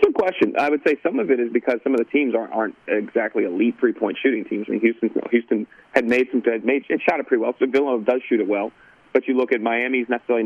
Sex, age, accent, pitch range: male, 30-49, American, 115-145 Hz